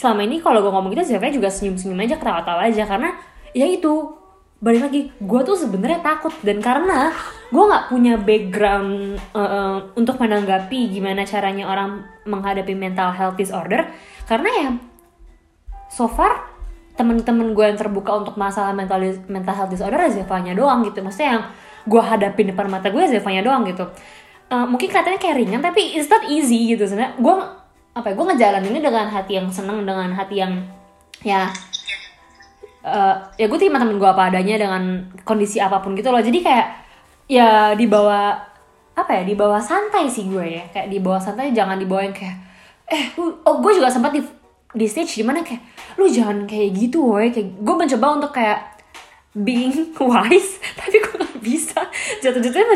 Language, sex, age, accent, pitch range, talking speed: Indonesian, female, 20-39, native, 200-285 Hz, 165 wpm